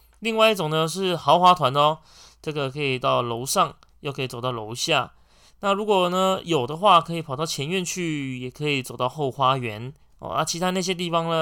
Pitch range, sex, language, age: 130-175 Hz, male, Chinese, 20-39